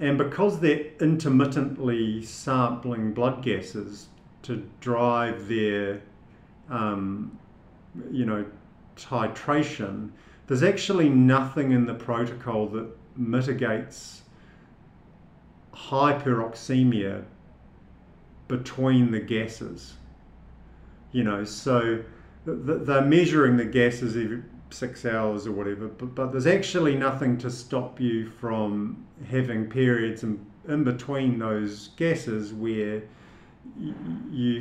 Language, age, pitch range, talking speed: English, 50-69, 110-135 Hz, 95 wpm